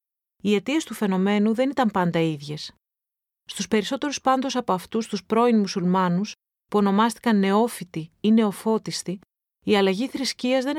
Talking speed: 140 wpm